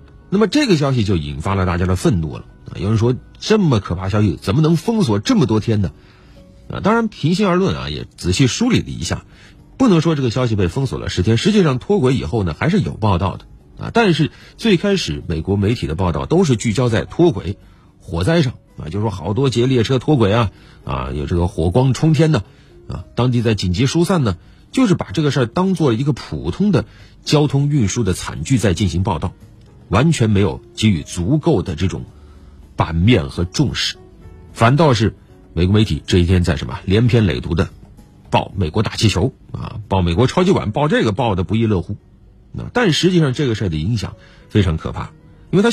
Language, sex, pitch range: Chinese, male, 95-155 Hz